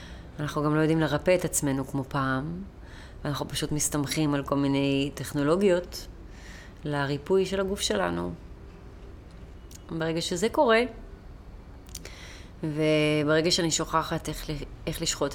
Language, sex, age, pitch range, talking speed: Hebrew, female, 30-49, 130-160 Hz, 115 wpm